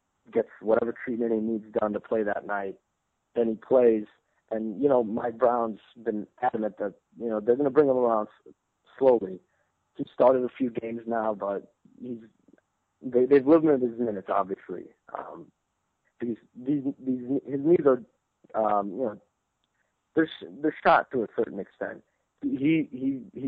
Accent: American